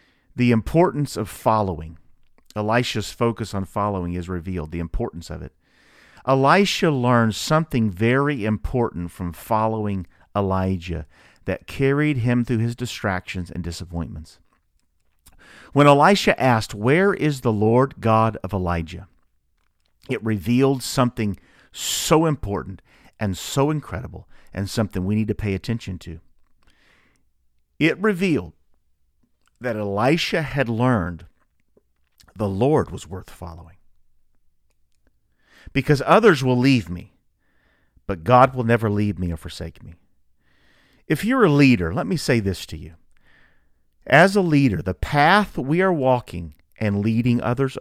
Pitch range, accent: 85-130 Hz, American